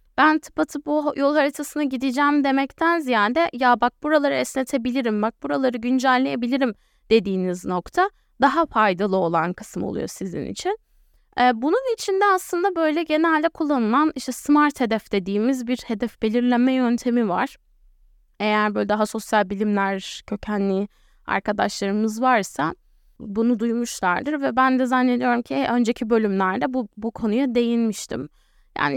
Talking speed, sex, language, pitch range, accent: 125 wpm, female, Turkish, 215-280 Hz, native